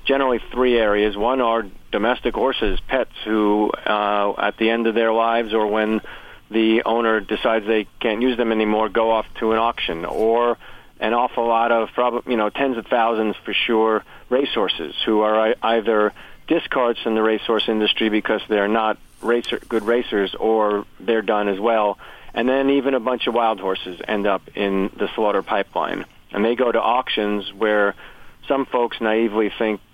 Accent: American